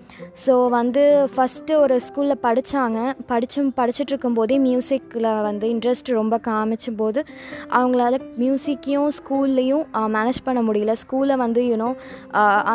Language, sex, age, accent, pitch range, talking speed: Tamil, female, 20-39, native, 220-275 Hz, 110 wpm